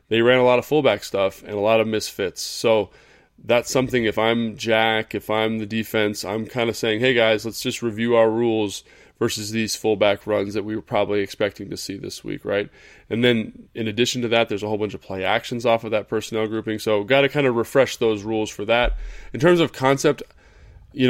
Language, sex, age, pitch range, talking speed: English, male, 20-39, 105-120 Hz, 230 wpm